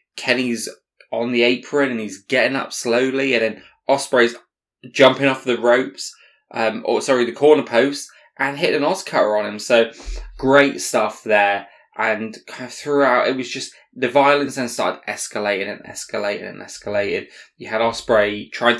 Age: 20-39